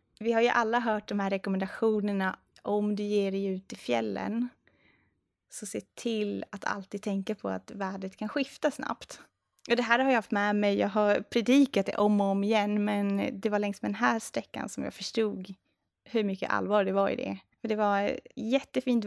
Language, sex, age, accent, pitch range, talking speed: Swedish, female, 20-39, Norwegian, 195-215 Hz, 200 wpm